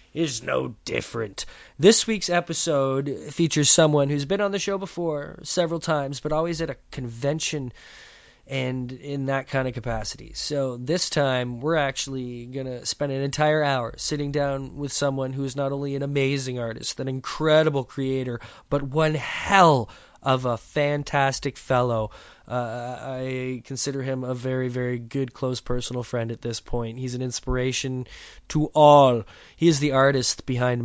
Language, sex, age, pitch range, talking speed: English, male, 20-39, 120-145 Hz, 165 wpm